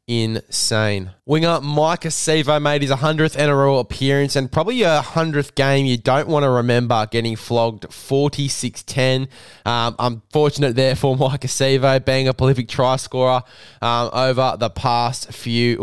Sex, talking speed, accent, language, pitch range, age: male, 140 wpm, Australian, English, 115-140 Hz, 10-29